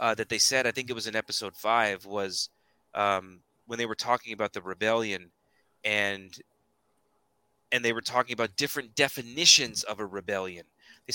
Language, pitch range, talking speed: English, 105-130 Hz, 170 wpm